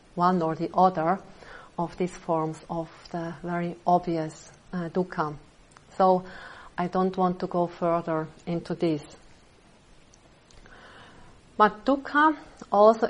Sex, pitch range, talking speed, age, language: female, 170-195 Hz, 115 wpm, 40-59, English